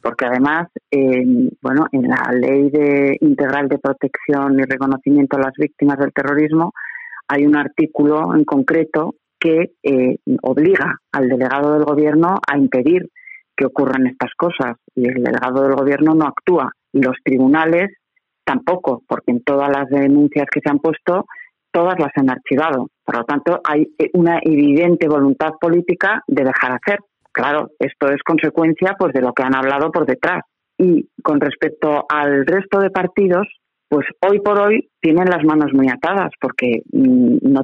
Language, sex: Spanish, female